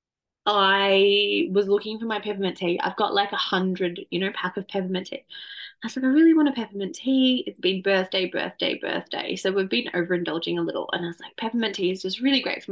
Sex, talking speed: female, 225 wpm